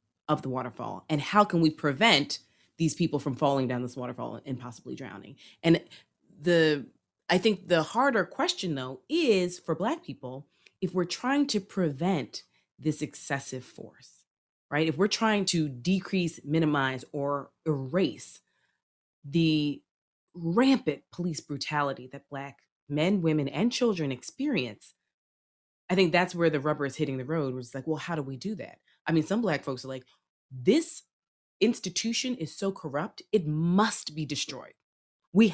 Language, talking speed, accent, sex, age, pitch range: English, 160 wpm, American, female, 30-49, 135-175 Hz